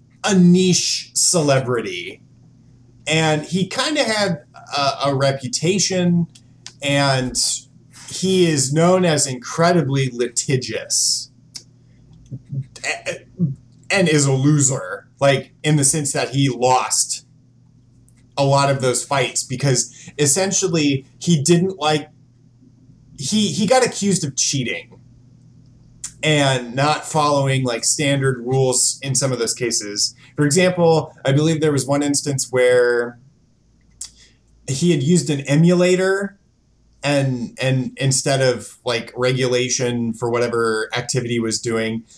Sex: male